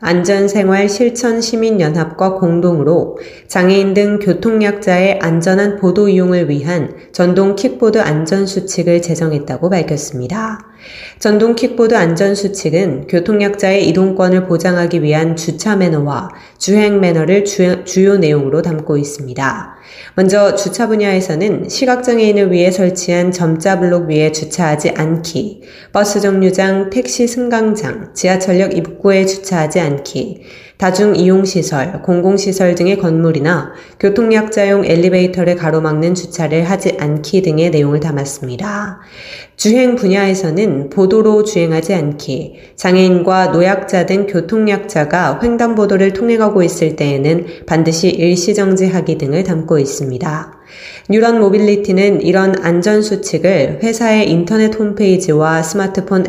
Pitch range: 165-200 Hz